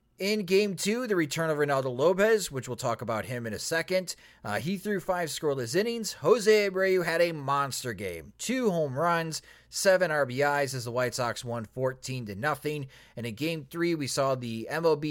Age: 30-49